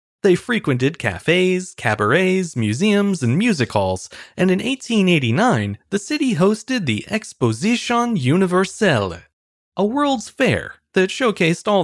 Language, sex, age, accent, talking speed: English, male, 30-49, American, 115 wpm